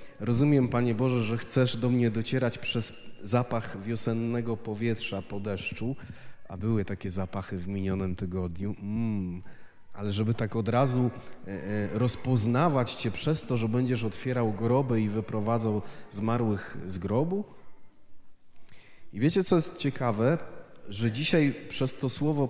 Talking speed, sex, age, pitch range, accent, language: 135 wpm, male, 30-49, 105-130 Hz, native, Polish